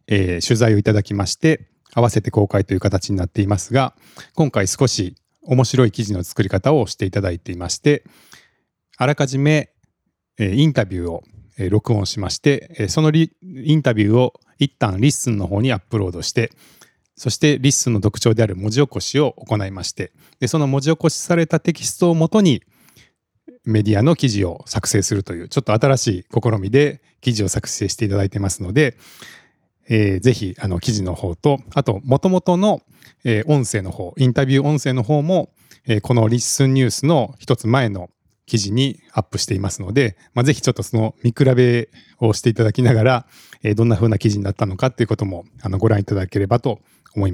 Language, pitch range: Japanese, 100-140 Hz